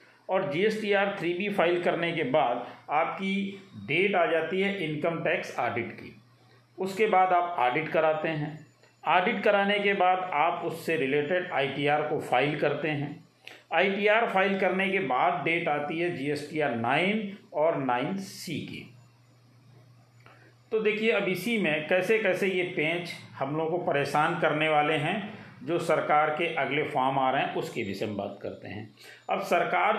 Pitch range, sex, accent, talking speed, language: 150-195 Hz, male, native, 160 wpm, Hindi